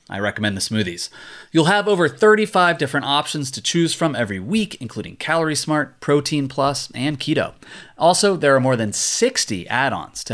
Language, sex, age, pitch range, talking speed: English, male, 30-49, 115-160 Hz, 180 wpm